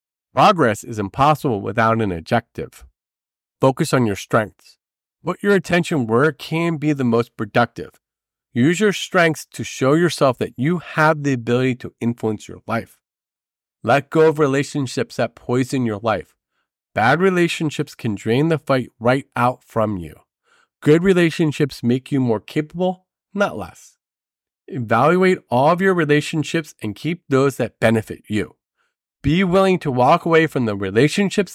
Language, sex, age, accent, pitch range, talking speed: English, male, 40-59, American, 115-160 Hz, 150 wpm